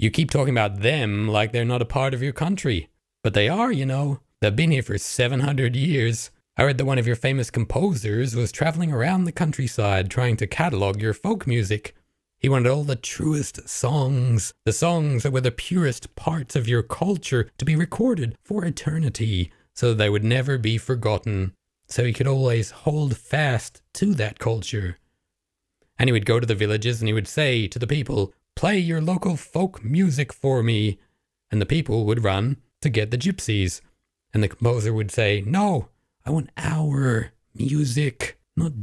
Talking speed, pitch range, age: 185 wpm, 105-140 Hz, 30-49